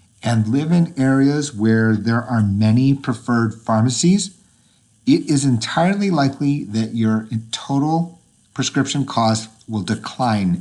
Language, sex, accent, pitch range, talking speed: English, male, American, 110-150 Hz, 120 wpm